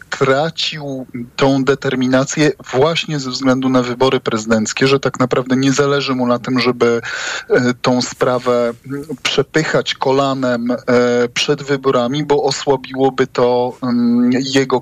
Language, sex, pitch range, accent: Polish, male, 120-135 Hz, native